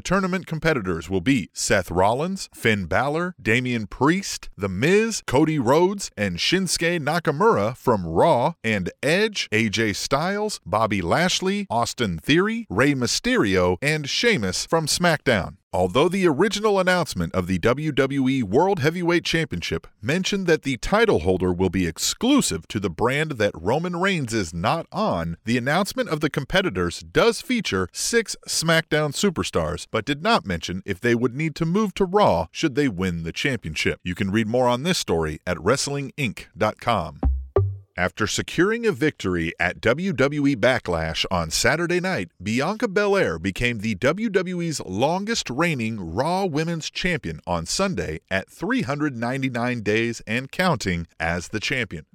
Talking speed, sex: 145 wpm, male